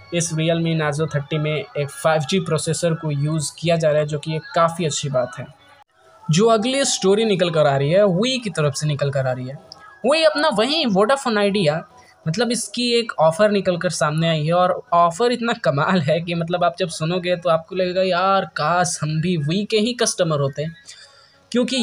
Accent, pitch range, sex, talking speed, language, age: native, 160-205 Hz, male, 210 wpm, Hindi, 20-39